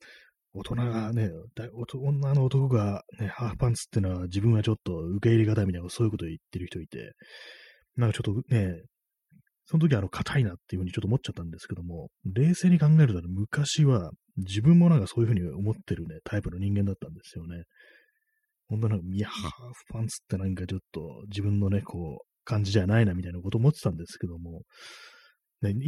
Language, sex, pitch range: Japanese, male, 90-130 Hz